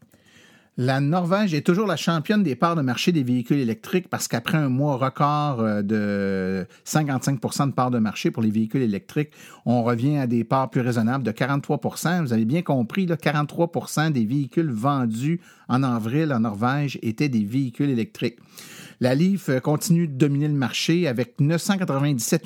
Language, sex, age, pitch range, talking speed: French, male, 50-69, 115-150 Hz, 165 wpm